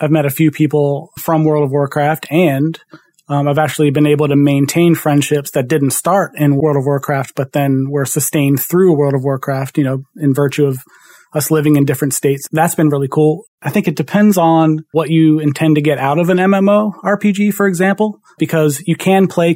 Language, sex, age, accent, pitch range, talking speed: English, male, 30-49, American, 145-160 Hz, 210 wpm